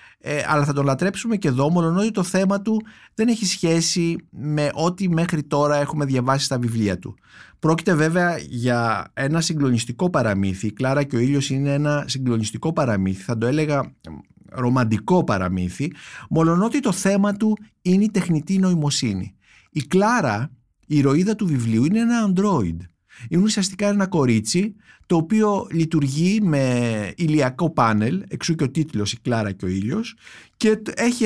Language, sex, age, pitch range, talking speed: Greek, male, 50-69, 125-180 Hz, 155 wpm